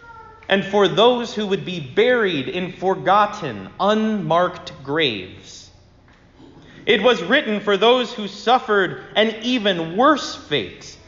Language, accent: English, American